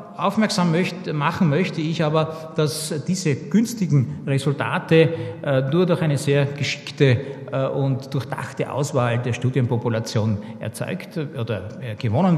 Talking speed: 105 wpm